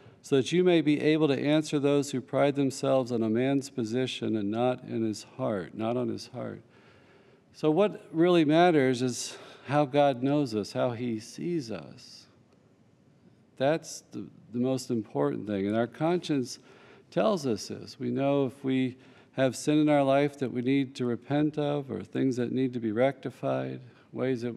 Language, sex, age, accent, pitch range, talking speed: English, male, 50-69, American, 120-145 Hz, 180 wpm